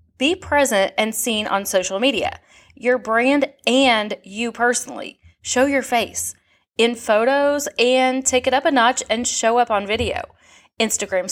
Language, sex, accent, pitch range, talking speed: English, female, American, 200-265 Hz, 155 wpm